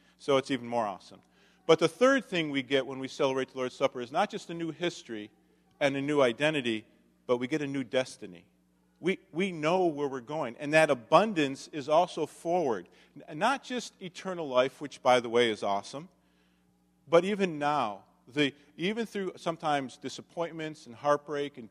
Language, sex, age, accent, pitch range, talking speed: English, male, 50-69, American, 125-155 Hz, 180 wpm